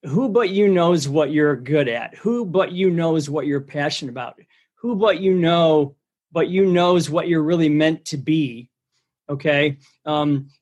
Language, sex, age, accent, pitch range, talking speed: English, male, 40-59, American, 145-185 Hz, 175 wpm